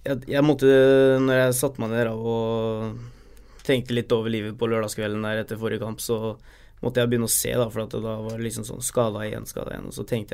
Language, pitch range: English, 110-125 Hz